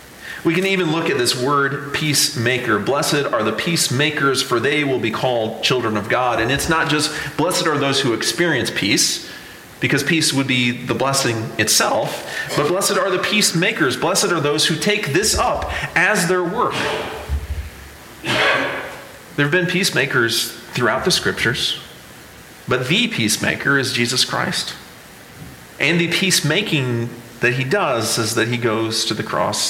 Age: 40-59